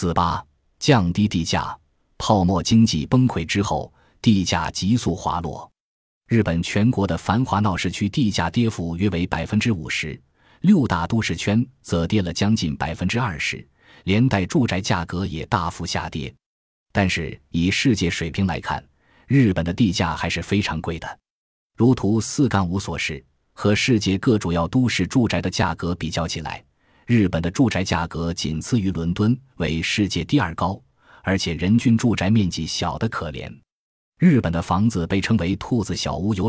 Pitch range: 85-110 Hz